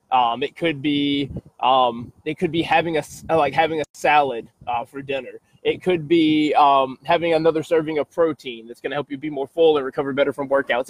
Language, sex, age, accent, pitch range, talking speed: English, male, 20-39, American, 140-180 Hz, 210 wpm